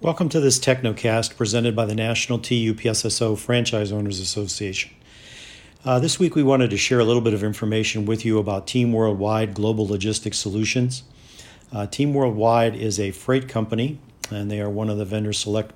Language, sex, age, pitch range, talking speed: English, male, 50-69, 105-125 Hz, 180 wpm